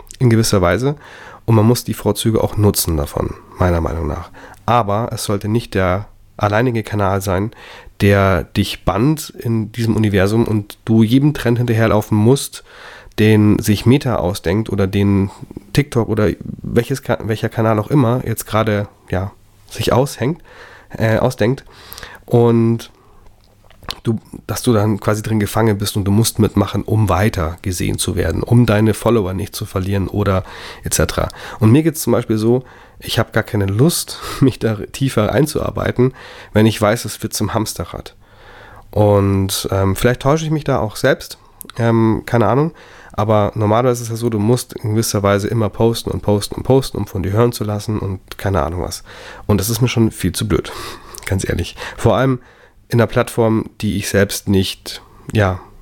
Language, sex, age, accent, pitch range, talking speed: German, male, 30-49, German, 100-120 Hz, 175 wpm